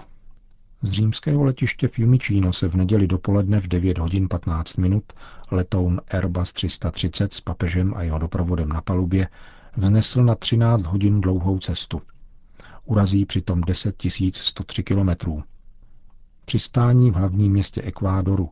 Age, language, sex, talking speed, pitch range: 50-69, Czech, male, 125 wpm, 90-100 Hz